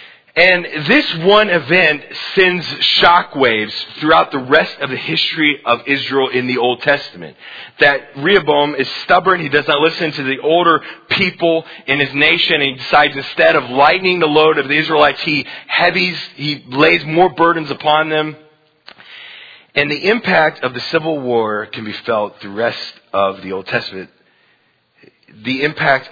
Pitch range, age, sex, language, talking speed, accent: 120-155 Hz, 30-49, male, English, 165 wpm, American